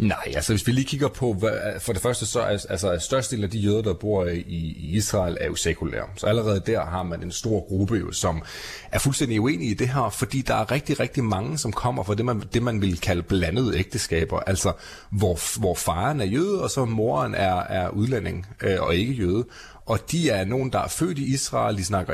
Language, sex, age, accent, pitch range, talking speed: Danish, male, 30-49, native, 95-125 Hz, 235 wpm